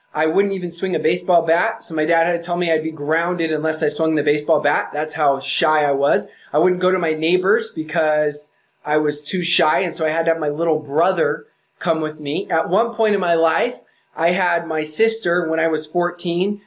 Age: 20-39